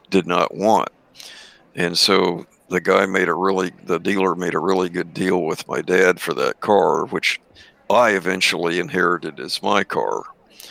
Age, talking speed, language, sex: 60-79, 170 wpm, English, male